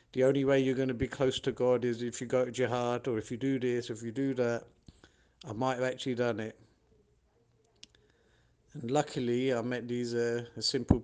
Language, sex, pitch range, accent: English, male, 120-165 Hz, British